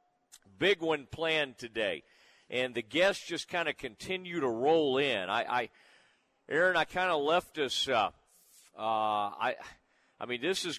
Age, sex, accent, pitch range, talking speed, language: 40-59, male, American, 130-165 Hz, 160 wpm, English